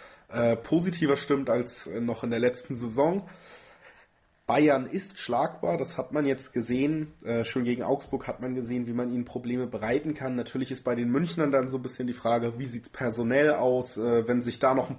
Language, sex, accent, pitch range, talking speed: German, male, German, 115-135 Hz, 195 wpm